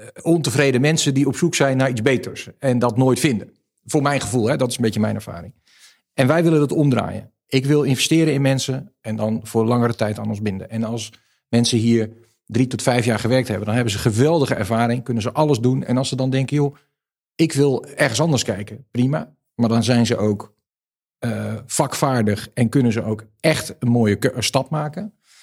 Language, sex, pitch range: Dutch, male, 110-135 Hz